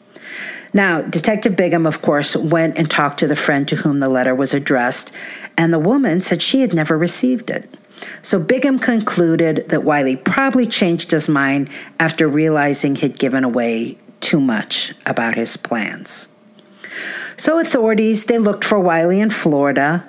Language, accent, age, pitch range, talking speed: English, American, 50-69, 150-225 Hz, 160 wpm